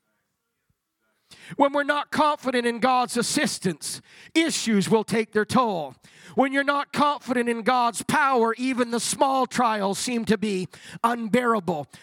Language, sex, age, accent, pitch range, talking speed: English, male, 40-59, American, 215-275 Hz, 135 wpm